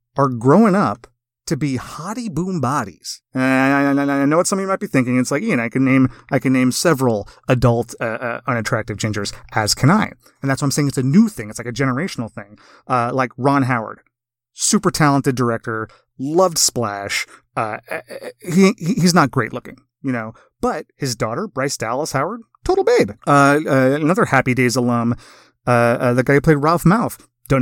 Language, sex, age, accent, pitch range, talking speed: English, male, 30-49, American, 120-160 Hz, 195 wpm